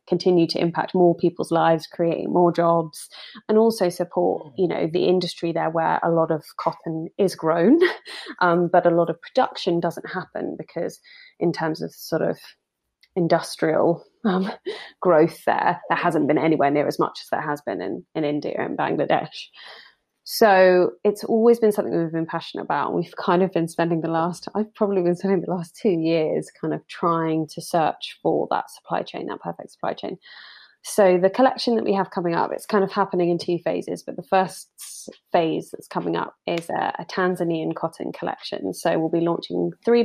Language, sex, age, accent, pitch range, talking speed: English, female, 20-39, British, 165-195 Hz, 195 wpm